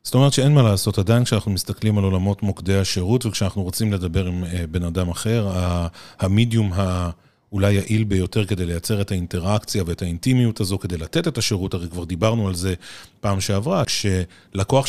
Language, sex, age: Hebrew, male, 30-49